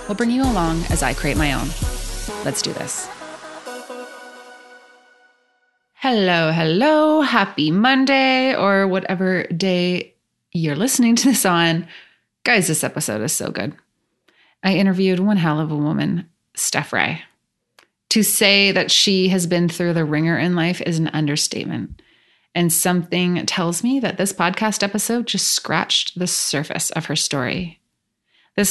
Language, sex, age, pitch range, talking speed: English, female, 20-39, 165-200 Hz, 145 wpm